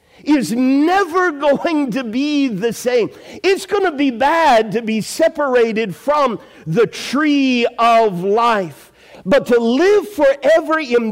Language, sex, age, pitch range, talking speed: English, male, 50-69, 235-310 Hz, 135 wpm